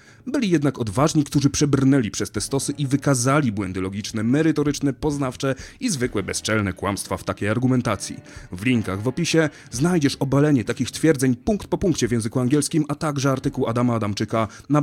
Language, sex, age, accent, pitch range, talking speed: Polish, male, 30-49, native, 110-145 Hz, 165 wpm